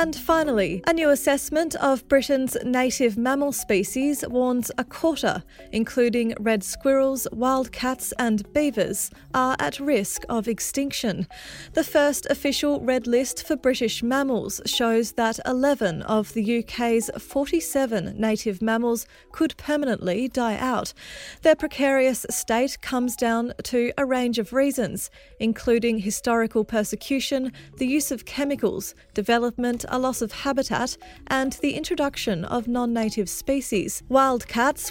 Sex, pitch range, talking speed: female, 225-270 Hz, 130 wpm